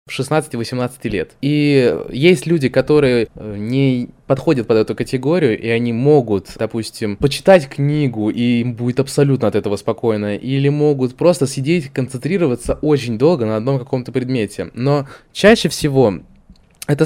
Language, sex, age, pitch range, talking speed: Russian, male, 20-39, 125-155 Hz, 140 wpm